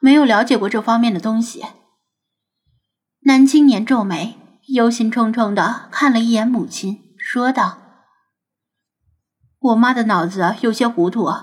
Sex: female